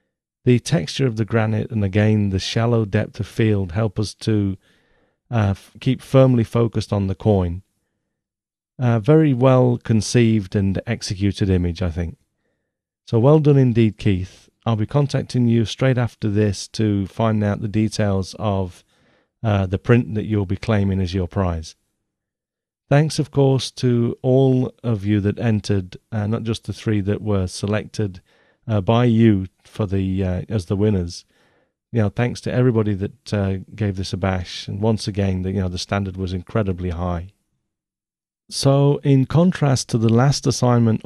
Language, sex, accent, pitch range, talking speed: English, male, British, 100-120 Hz, 165 wpm